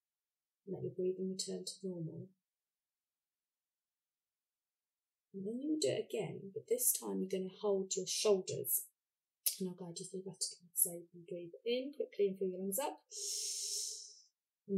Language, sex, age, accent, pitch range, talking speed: English, female, 30-49, British, 185-260 Hz, 160 wpm